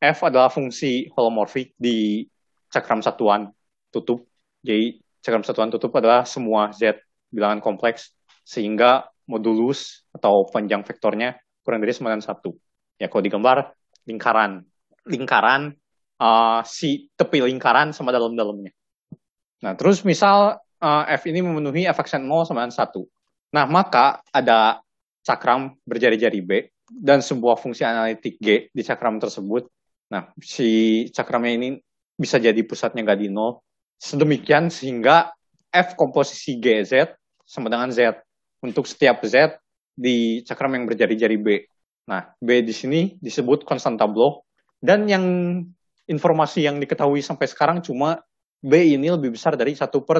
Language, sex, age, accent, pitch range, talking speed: Indonesian, male, 20-39, native, 115-145 Hz, 135 wpm